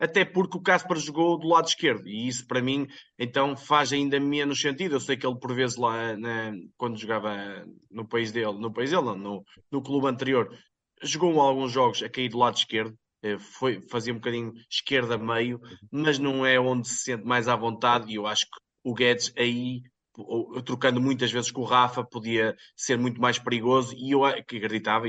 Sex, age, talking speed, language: male, 20-39, 195 wpm, Portuguese